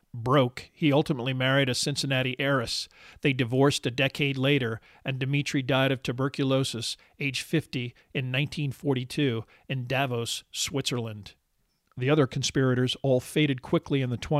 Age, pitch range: 50-69, 125-140 Hz